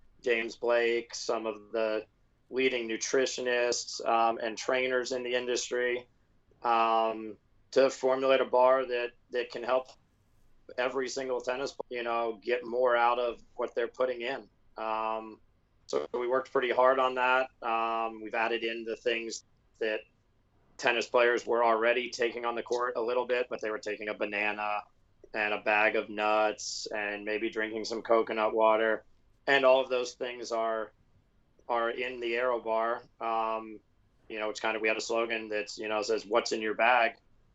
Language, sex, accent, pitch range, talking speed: English, male, American, 110-125 Hz, 170 wpm